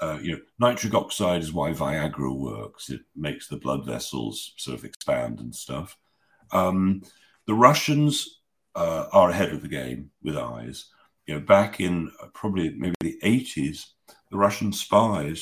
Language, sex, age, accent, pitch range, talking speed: English, male, 50-69, British, 75-100 Hz, 165 wpm